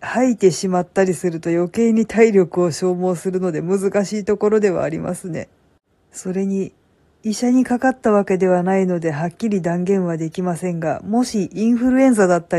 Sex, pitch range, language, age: female, 165-195 Hz, Japanese, 50-69